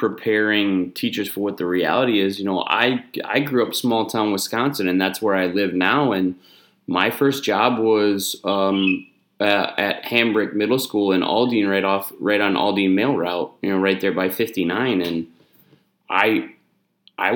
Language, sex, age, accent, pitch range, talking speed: English, male, 20-39, American, 95-110 Hz, 175 wpm